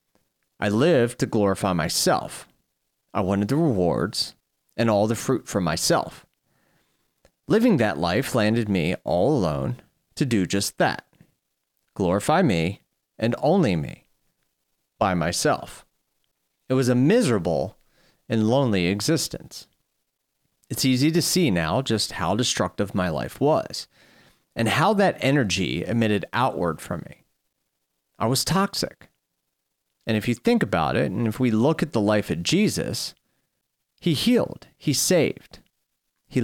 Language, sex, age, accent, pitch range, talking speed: English, male, 30-49, American, 95-140 Hz, 135 wpm